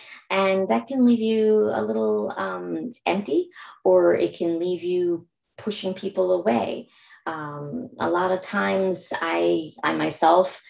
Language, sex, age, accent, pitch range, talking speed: English, female, 30-49, American, 145-210 Hz, 140 wpm